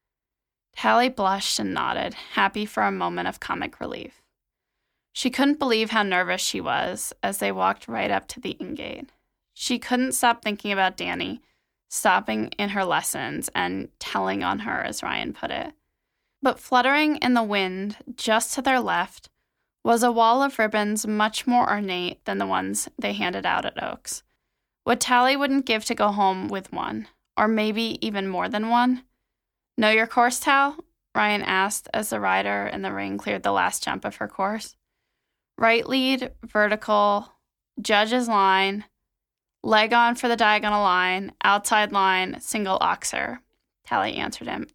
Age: 10-29